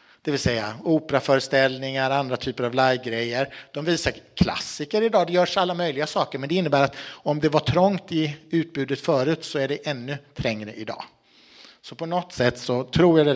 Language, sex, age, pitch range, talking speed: Swedish, male, 60-79, 125-165 Hz, 190 wpm